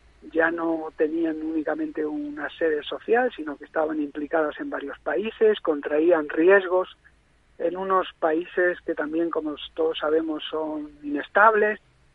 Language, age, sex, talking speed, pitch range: Spanish, 40-59, male, 130 wpm, 160-210 Hz